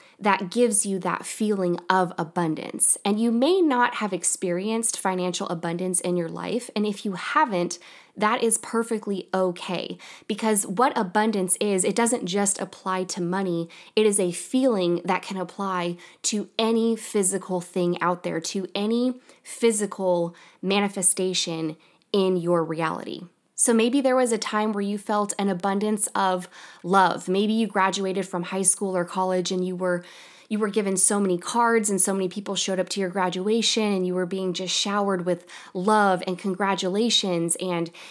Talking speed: 165 wpm